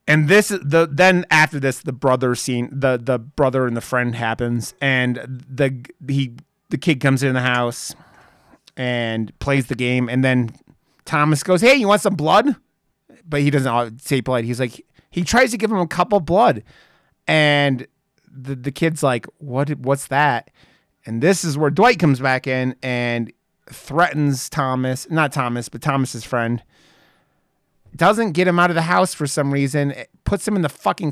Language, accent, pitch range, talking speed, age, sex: English, American, 125-160 Hz, 180 wpm, 30-49, male